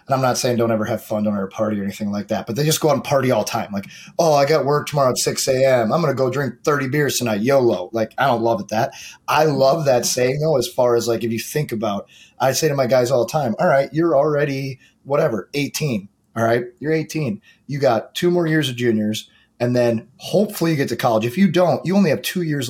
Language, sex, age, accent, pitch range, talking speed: English, male, 30-49, American, 115-160 Hz, 270 wpm